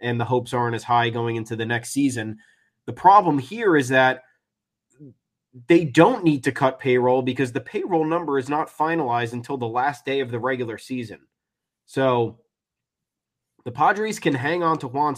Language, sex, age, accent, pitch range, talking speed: English, male, 20-39, American, 115-140 Hz, 180 wpm